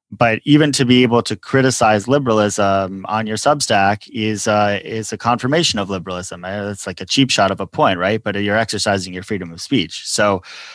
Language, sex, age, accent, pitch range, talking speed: English, male, 30-49, American, 100-120 Hz, 195 wpm